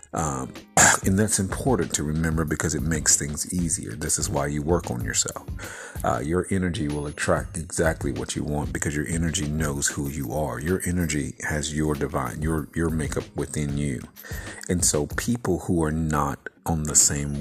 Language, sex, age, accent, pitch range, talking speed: English, male, 50-69, American, 75-85 Hz, 185 wpm